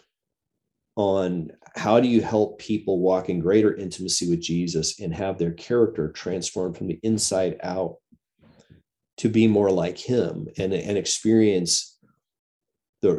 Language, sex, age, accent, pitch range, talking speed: English, male, 40-59, American, 90-105 Hz, 135 wpm